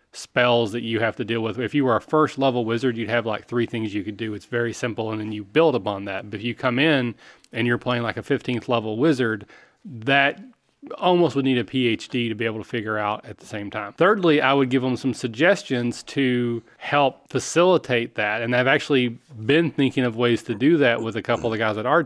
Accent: American